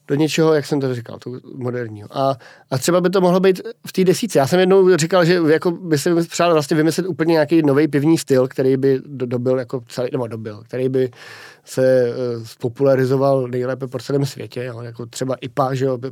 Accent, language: native, Czech